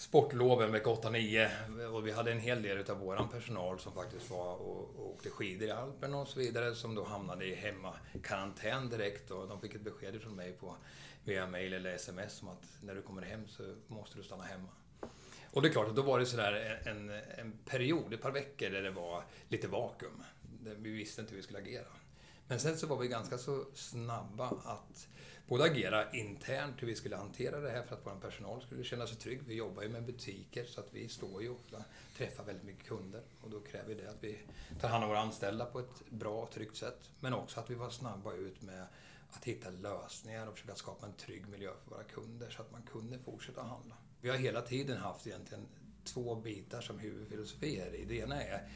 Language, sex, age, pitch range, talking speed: Swedish, male, 30-49, 100-120 Hz, 220 wpm